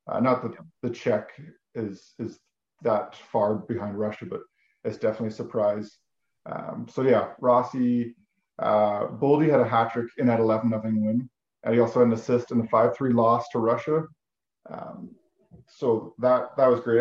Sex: male